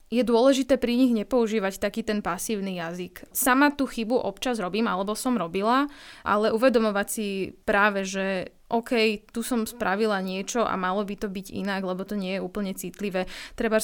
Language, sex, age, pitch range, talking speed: Slovak, female, 20-39, 190-220 Hz, 175 wpm